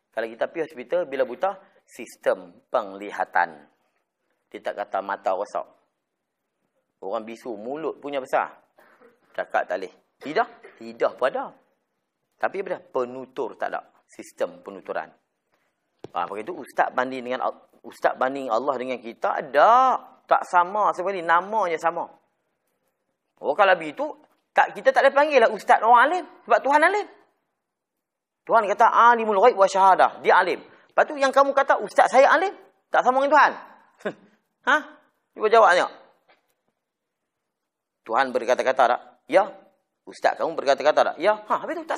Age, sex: 30-49, male